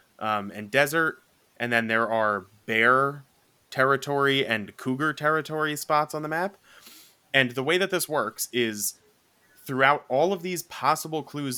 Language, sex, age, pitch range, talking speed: English, male, 20-39, 110-140 Hz, 150 wpm